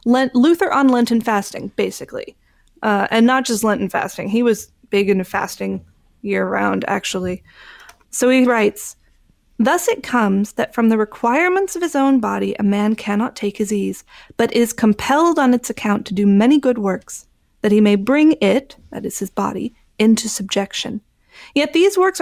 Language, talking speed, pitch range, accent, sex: English, 170 wpm, 200-275 Hz, American, female